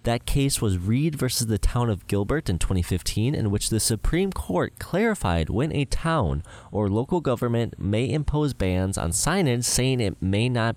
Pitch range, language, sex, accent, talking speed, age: 90-130 Hz, English, male, American, 180 wpm, 20-39